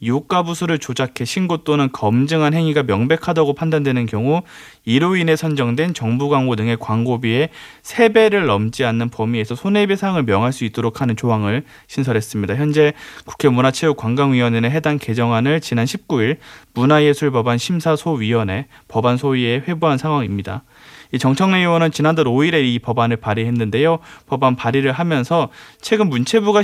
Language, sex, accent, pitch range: Korean, male, native, 115-160 Hz